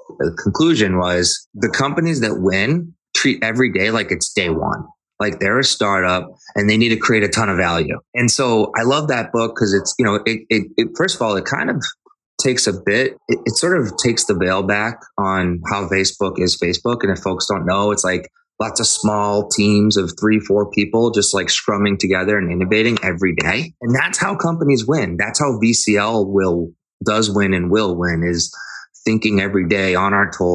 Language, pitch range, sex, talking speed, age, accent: English, 90-110 Hz, male, 205 wpm, 20-39, American